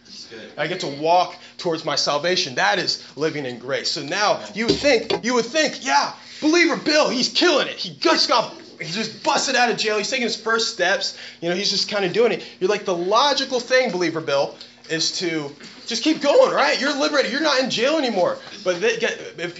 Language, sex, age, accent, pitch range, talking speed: English, male, 20-39, American, 130-215 Hz, 215 wpm